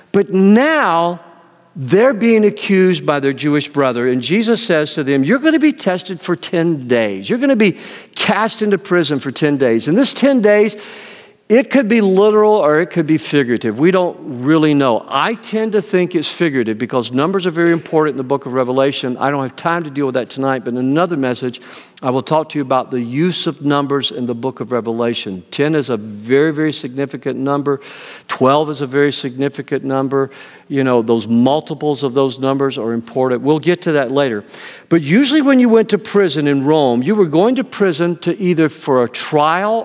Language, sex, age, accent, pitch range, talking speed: English, male, 50-69, American, 140-210 Hz, 205 wpm